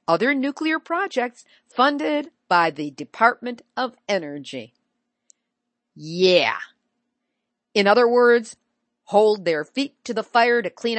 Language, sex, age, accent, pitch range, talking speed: English, female, 50-69, American, 180-245 Hz, 115 wpm